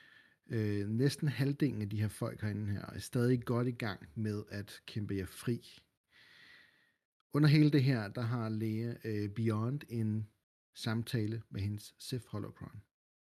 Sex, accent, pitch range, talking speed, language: male, native, 105-125 Hz, 155 wpm, Danish